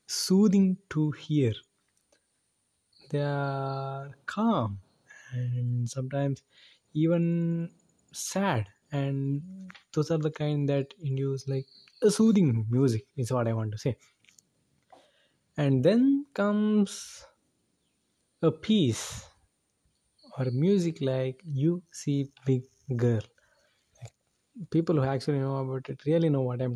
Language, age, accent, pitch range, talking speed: English, 20-39, Indian, 125-160 Hz, 110 wpm